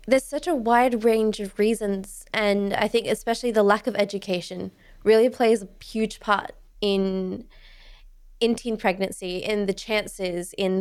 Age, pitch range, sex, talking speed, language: 20-39, 195-230 Hz, female, 155 wpm, English